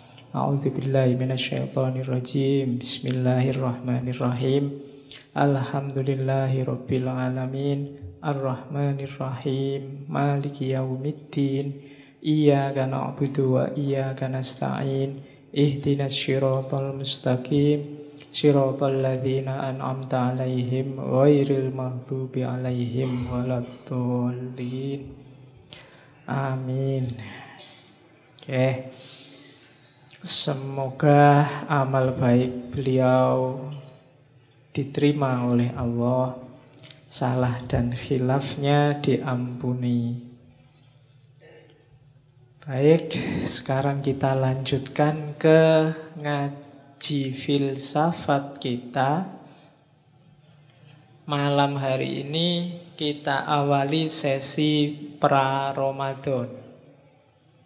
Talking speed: 60 wpm